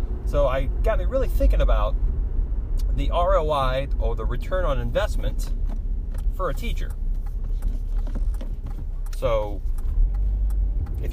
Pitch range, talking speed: 70-90 Hz, 100 wpm